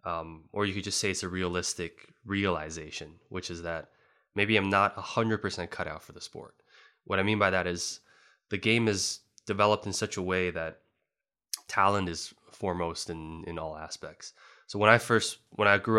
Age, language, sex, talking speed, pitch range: 20-39, English, male, 190 wpm, 85-100 Hz